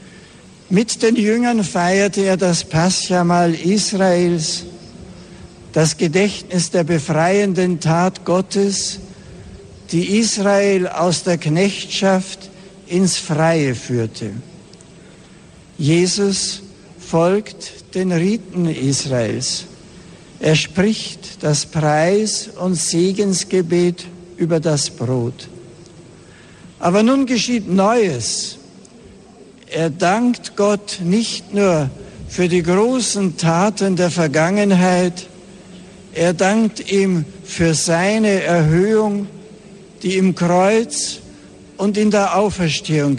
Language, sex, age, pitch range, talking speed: German, male, 60-79, 165-195 Hz, 90 wpm